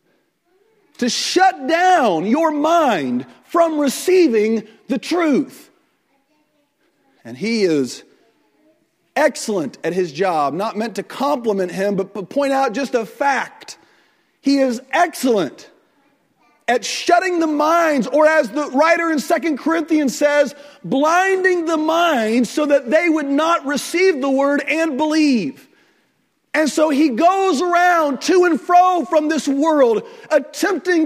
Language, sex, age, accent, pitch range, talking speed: English, male, 40-59, American, 230-330 Hz, 130 wpm